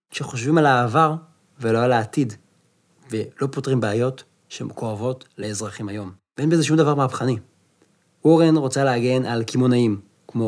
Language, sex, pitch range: Hebrew, male, 125-175 Hz